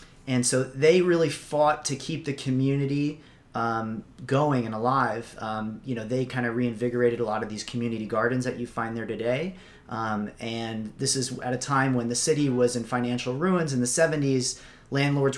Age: 30-49